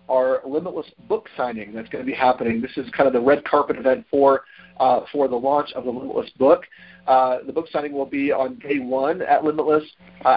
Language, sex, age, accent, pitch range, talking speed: English, male, 40-59, American, 130-160 Hz, 220 wpm